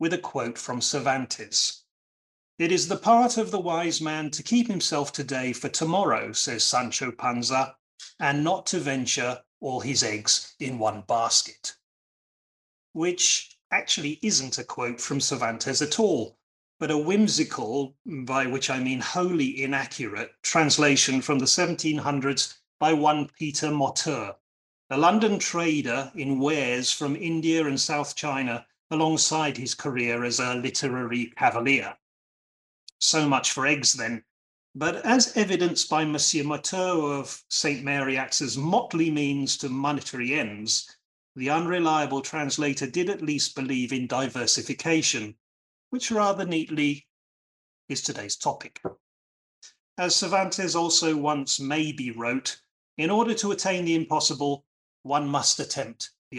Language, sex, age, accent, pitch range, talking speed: English, male, 30-49, British, 130-160 Hz, 135 wpm